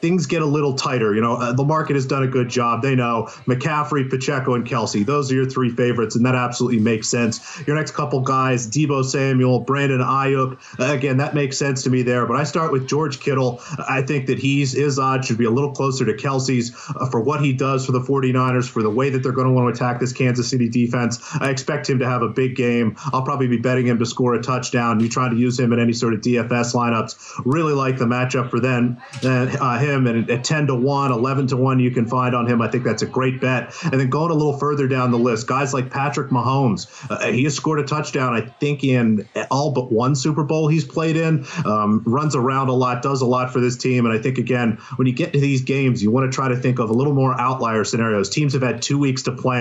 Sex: male